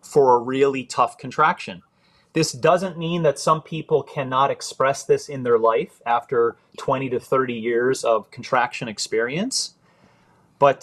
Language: English